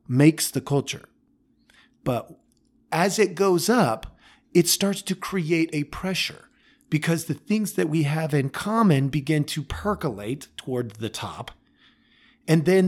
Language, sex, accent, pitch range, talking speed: English, male, American, 120-165 Hz, 140 wpm